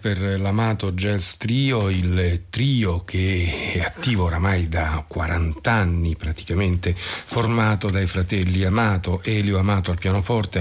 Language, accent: Italian, native